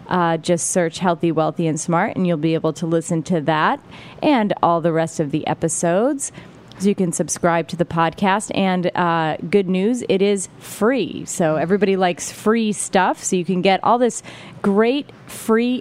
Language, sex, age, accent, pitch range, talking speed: English, female, 30-49, American, 170-200 Hz, 185 wpm